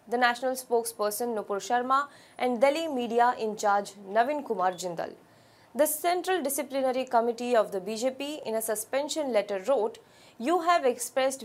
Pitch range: 215-275 Hz